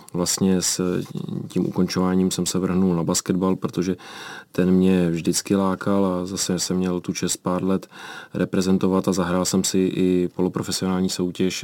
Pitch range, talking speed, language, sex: 90-95 Hz, 155 wpm, Czech, male